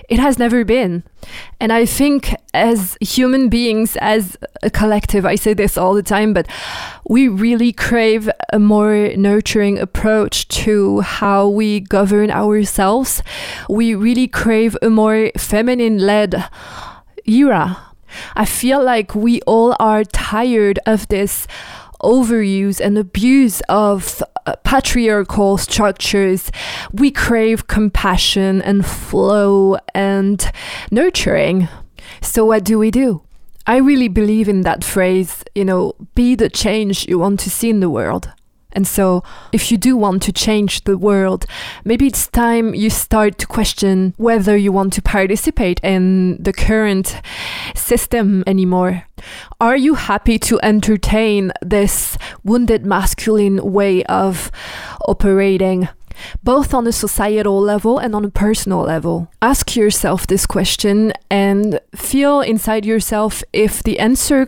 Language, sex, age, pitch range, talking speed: English, female, 20-39, 195-230 Hz, 135 wpm